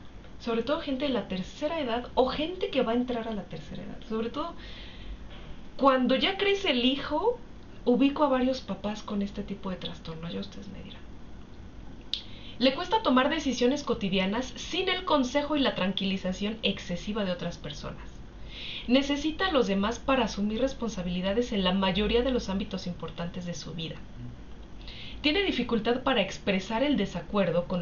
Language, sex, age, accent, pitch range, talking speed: Spanish, female, 30-49, Mexican, 185-260 Hz, 165 wpm